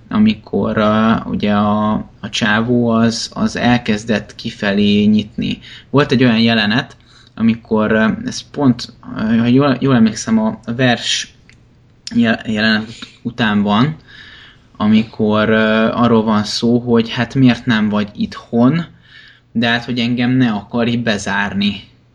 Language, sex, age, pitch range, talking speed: Hungarian, male, 20-39, 110-130 Hz, 115 wpm